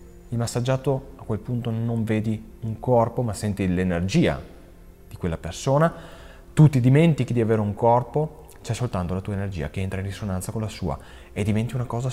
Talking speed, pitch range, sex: 190 wpm, 90-125 Hz, male